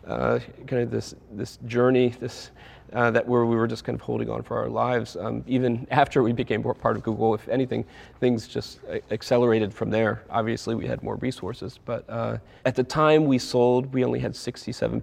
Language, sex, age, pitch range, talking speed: English, male, 30-49, 110-125 Hz, 205 wpm